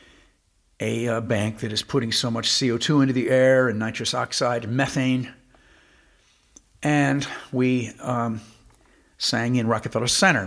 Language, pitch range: English, 115-160 Hz